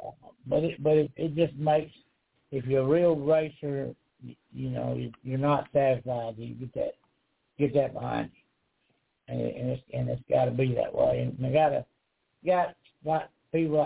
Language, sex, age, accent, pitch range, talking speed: English, male, 60-79, American, 130-155 Hz, 185 wpm